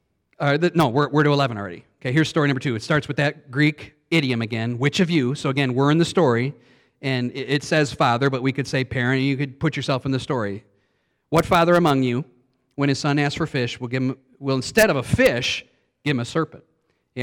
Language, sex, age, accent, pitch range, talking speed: English, male, 40-59, American, 130-170 Hz, 245 wpm